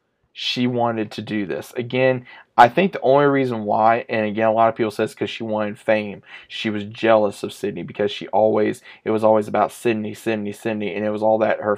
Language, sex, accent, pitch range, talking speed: English, male, American, 105-120 Hz, 225 wpm